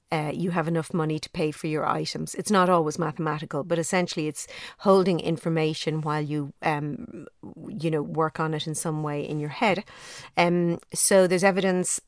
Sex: female